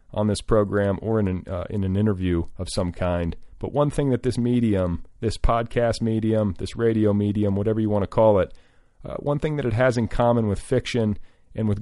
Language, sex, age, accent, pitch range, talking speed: English, male, 40-59, American, 100-120 Hz, 210 wpm